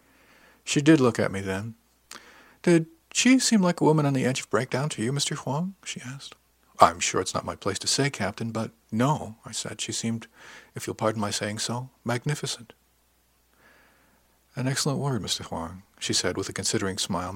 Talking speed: 195 wpm